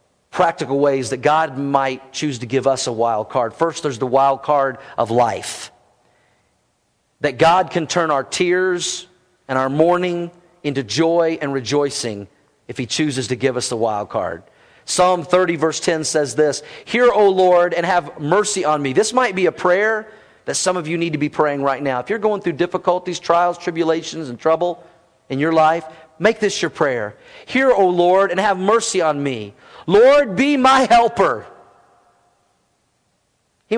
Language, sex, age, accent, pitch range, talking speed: English, male, 40-59, American, 135-180 Hz, 175 wpm